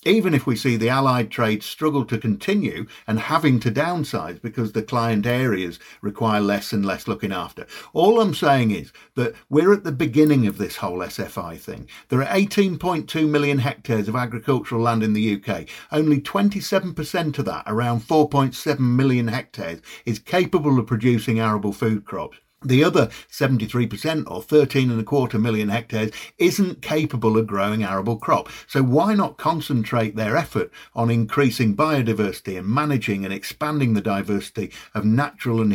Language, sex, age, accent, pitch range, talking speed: English, male, 50-69, British, 115-150 Hz, 165 wpm